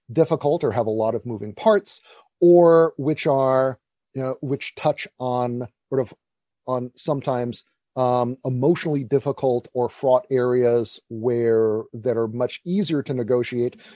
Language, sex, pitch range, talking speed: English, male, 115-150 Hz, 140 wpm